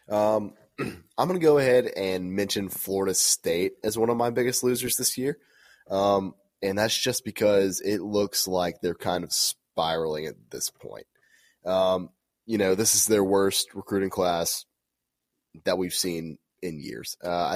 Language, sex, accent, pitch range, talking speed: English, male, American, 90-105 Hz, 165 wpm